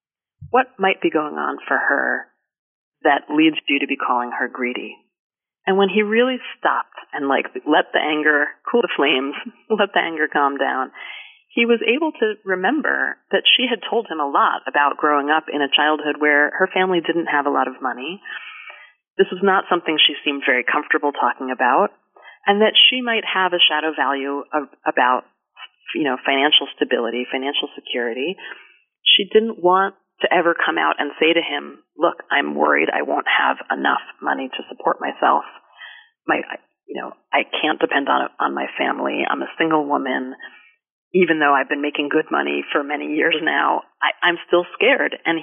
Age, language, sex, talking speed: 30-49, English, female, 180 wpm